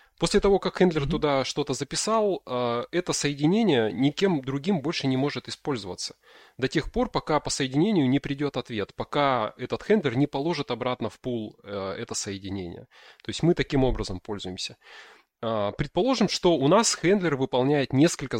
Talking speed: 155 wpm